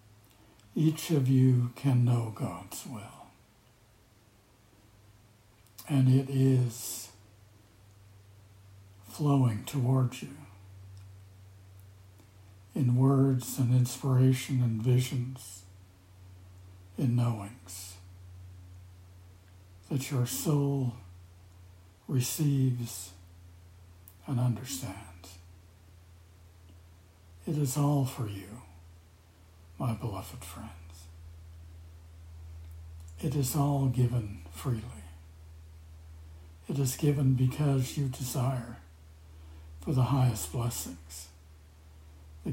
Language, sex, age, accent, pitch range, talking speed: English, male, 60-79, American, 85-125 Hz, 70 wpm